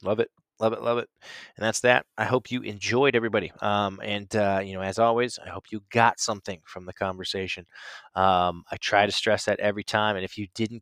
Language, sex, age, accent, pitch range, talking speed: English, male, 20-39, American, 95-110 Hz, 225 wpm